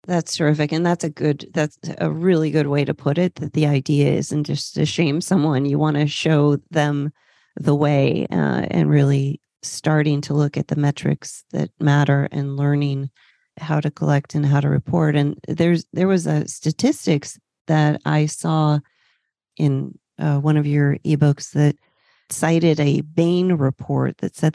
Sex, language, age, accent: female, English, 40-59, American